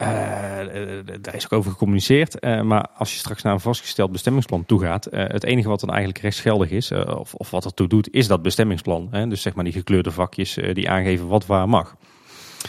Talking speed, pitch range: 225 wpm, 95-110 Hz